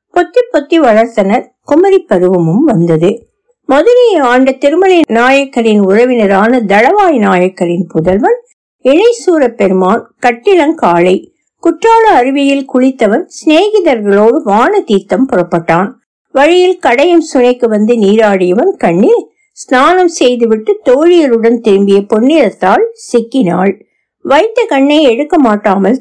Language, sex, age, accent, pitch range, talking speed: Tamil, female, 60-79, native, 200-325 Hz, 75 wpm